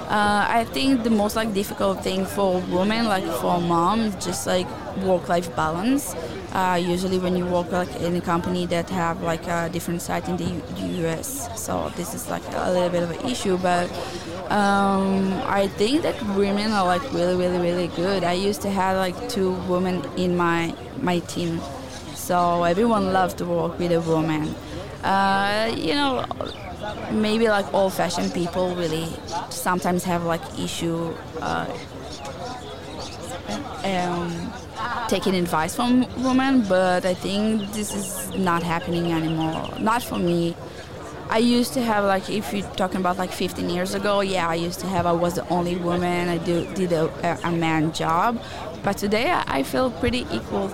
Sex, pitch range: female, 170-200 Hz